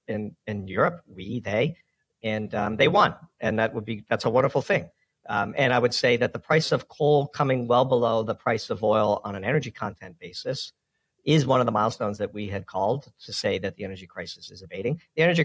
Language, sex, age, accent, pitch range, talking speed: English, male, 50-69, American, 105-120 Hz, 225 wpm